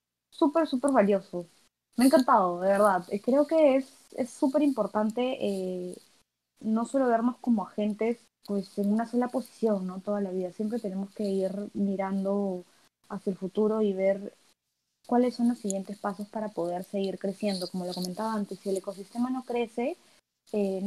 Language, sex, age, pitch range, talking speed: Spanish, female, 20-39, 195-240 Hz, 165 wpm